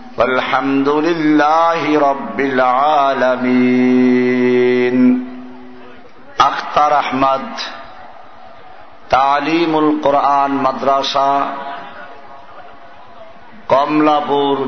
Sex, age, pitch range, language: male, 50-69, 145-190 Hz, Bengali